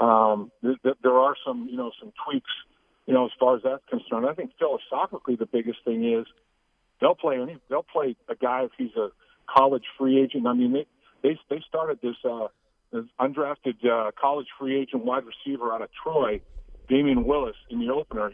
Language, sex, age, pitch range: English, male, 50-69, 120-180 Hz